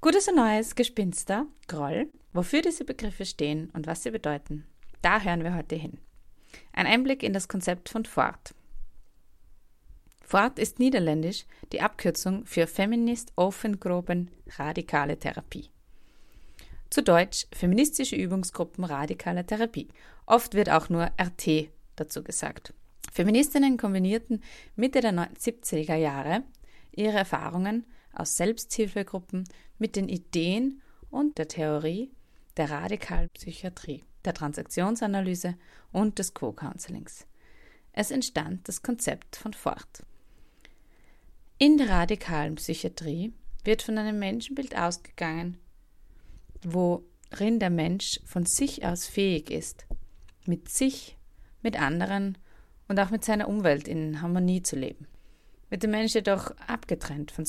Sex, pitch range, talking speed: female, 165-225 Hz, 115 wpm